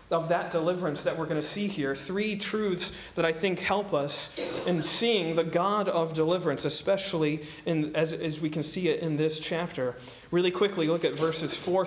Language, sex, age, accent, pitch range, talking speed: English, male, 40-59, American, 160-195 Hz, 195 wpm